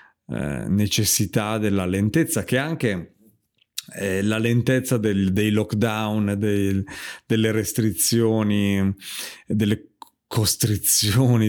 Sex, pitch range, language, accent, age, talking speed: male, 100-125 Hz, Italian, native, 40-59, 80 wpm